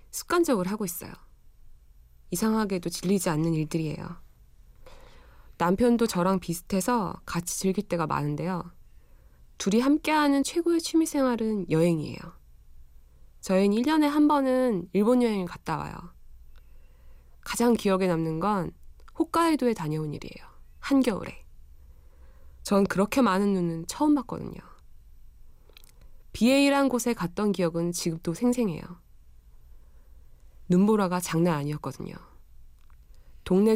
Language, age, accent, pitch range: Korean, 20-39, native, 150-230 Hz